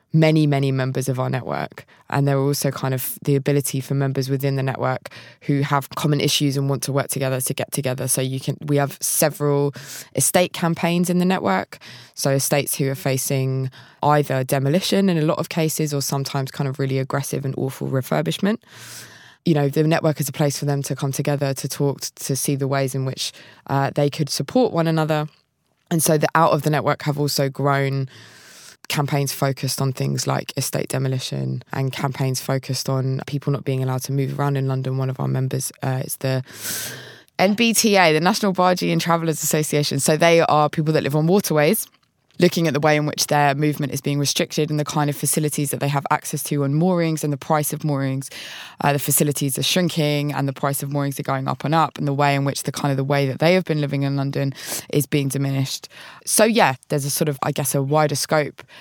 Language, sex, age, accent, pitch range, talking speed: English, female, 20-39, British, 135-155 Hz, 220 wpm